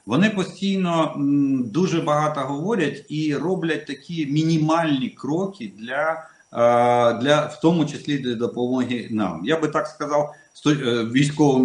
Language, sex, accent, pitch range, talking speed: Russian, male, native, 120-160 Hz, 120 wpm